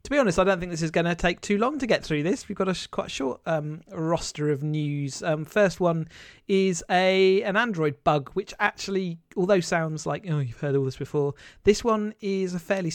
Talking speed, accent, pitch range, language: 230 wpm, British, 145-180 Hz, English